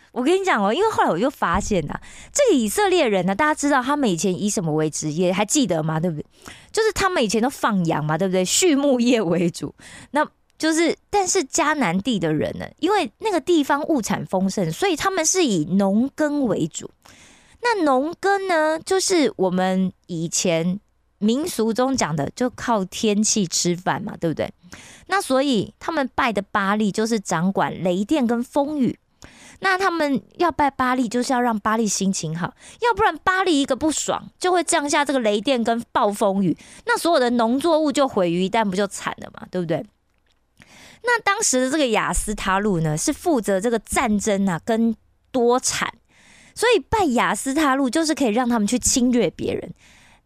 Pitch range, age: 195-315 Hz, 20-39